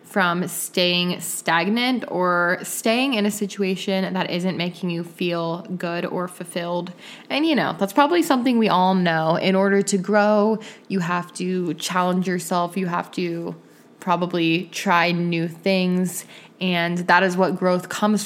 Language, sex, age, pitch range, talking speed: English, female, 20-39, 175-200 Hz, 155 wpm